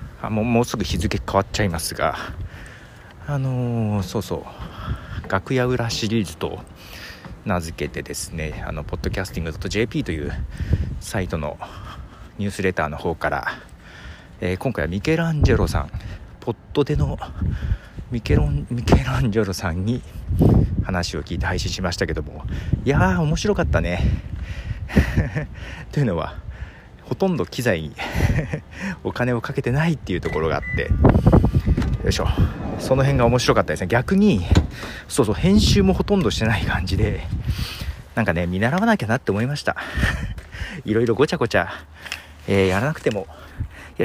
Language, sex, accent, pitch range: Japanese, male, native, 85-120 Hz